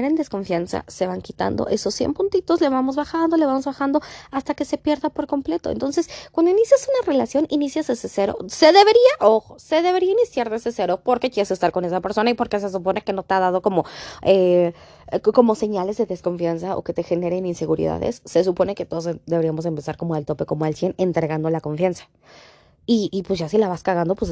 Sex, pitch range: female, 170-235 Hz